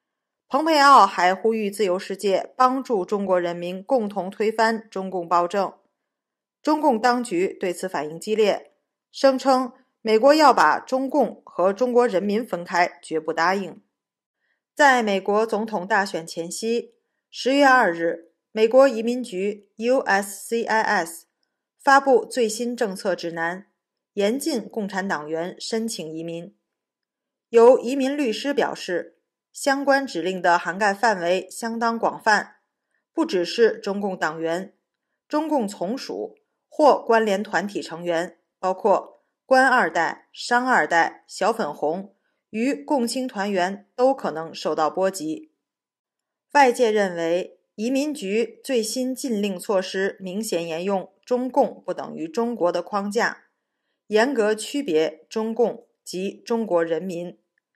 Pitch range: 180-255 Hz